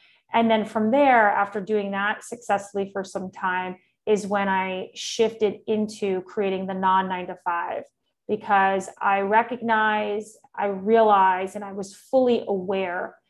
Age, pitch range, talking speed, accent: 30-49, 195-225 Hz, 145 wpm, American